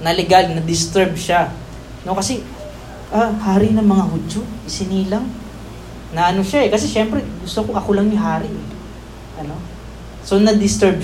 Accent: native